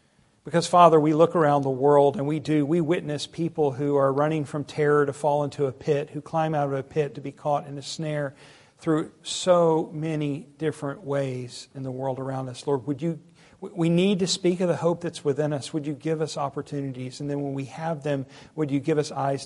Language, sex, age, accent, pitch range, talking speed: English, male, 50-69, American, 135-150 Hz, 230 wpm